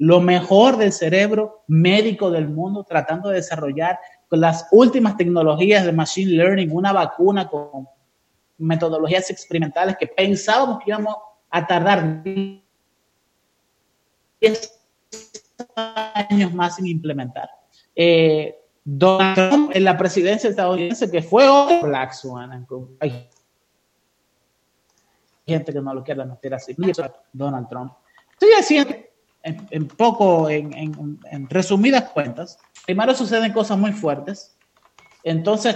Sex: male